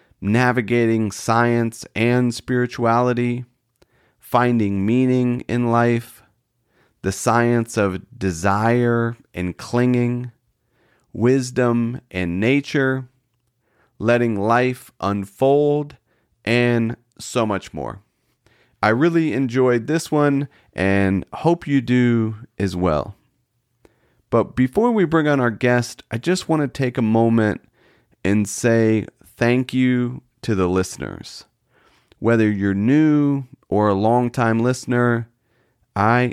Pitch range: 105-125 Hz